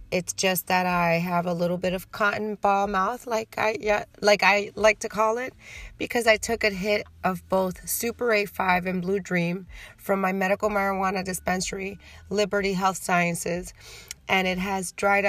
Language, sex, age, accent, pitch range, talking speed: English, female, 30-49, American, 175-200 Hz, 175 wpm